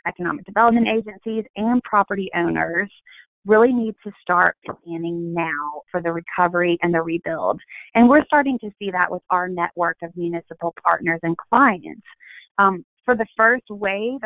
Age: 30-49